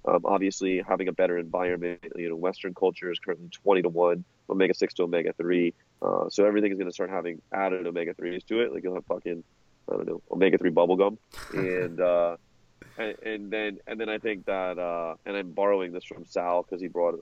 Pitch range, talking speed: 85-100 Hz, 225 wpm